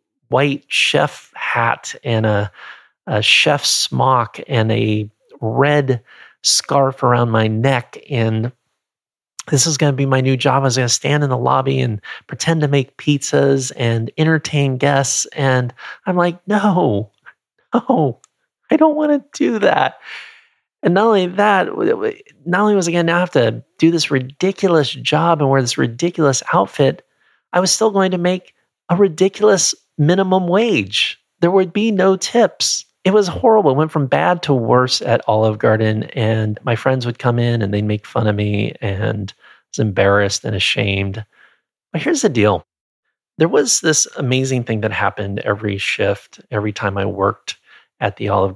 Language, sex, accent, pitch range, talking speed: English, male, American, 110-170 Hz, 170 wpm